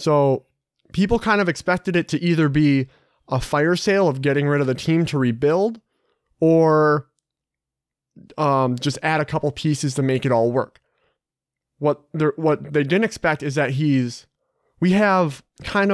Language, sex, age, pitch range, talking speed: English, male, 30-49, 140-180 Hz, 160 wpm